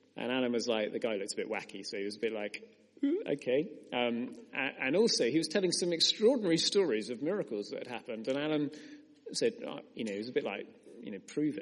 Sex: male